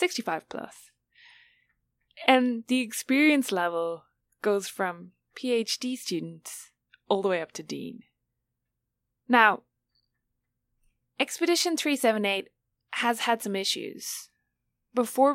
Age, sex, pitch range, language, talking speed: 20-39, female, 170-245 Hz, English, 95 wpm